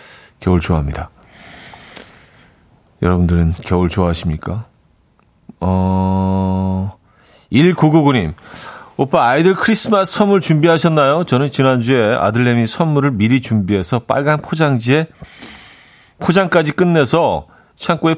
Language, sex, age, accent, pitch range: Korean, male, 40-59, native, 105-160 Hz